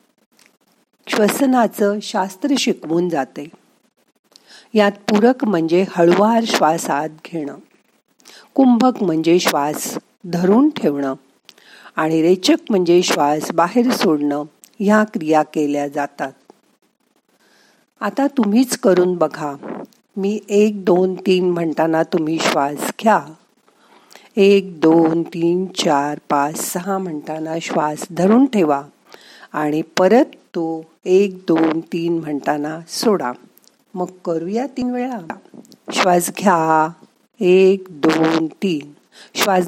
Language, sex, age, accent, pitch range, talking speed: Marathi, female, 50-69, native, 160-205 Hz, 100 wpm